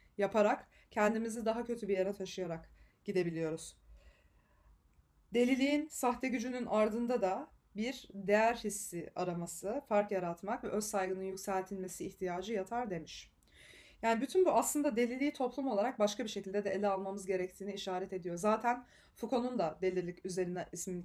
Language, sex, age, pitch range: Turkish, female, 30-49, 185-235 Hz